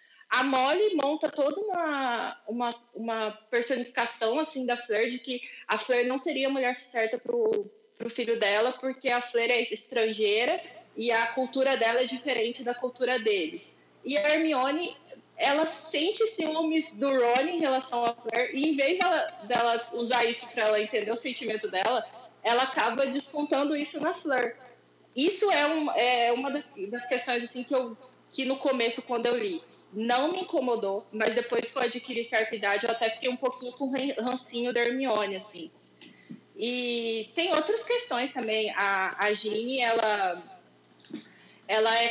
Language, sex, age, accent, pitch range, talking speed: Portuguese, female, 20-39, Brazilian, 230-275 Hz, 165 wpm